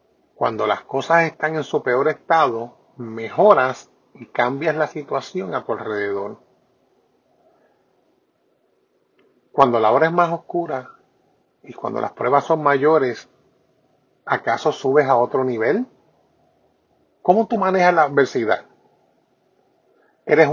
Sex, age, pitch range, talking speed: male, 30-49, 135-195 Hz, 115 wpm